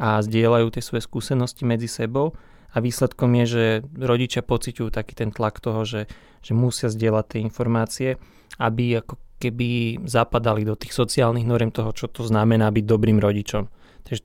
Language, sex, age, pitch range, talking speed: Slovak, male, 20-39, 115-130 Hz, 165 wpm